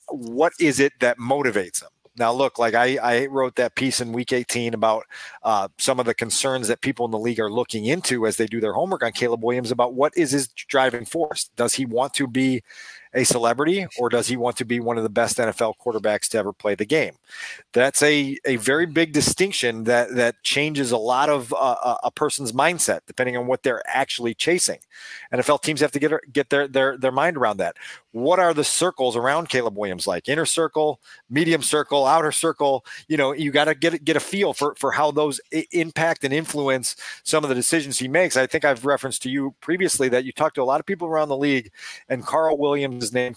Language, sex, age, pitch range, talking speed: English, male, 40-59, 120-150 Hz, 225 wpm